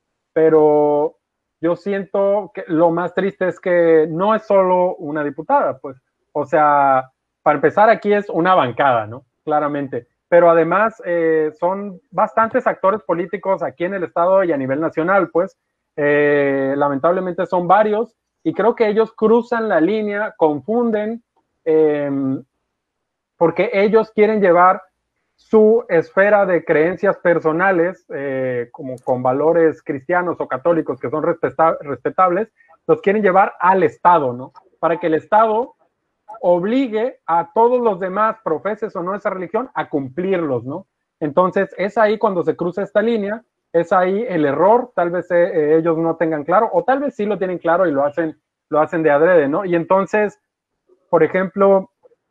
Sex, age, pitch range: male, 30-49, 155-210 Hz